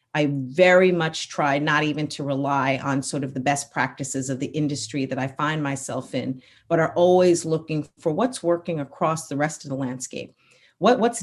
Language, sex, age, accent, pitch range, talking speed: English, female, 40-59, American, 140-165 Hz, 190 wpm